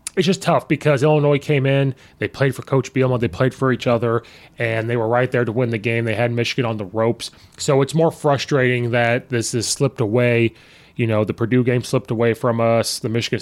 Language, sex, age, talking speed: English, male, 20-39, 235 wpm